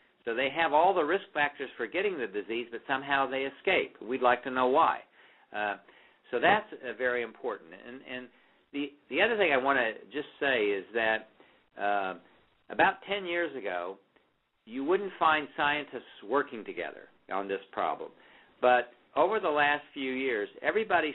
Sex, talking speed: male, 170 wpm